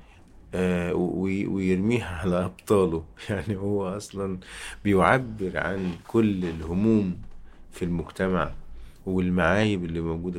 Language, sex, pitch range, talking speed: Arabic, male, 85-100 Hz, 85 wpm